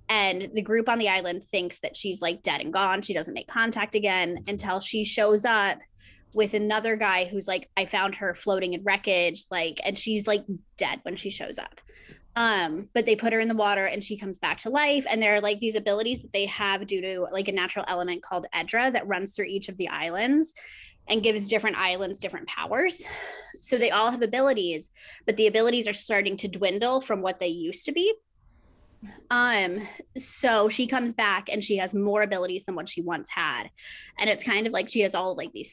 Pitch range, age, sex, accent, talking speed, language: 190-225 Hz, 20-39, female, American, 220 wpm, English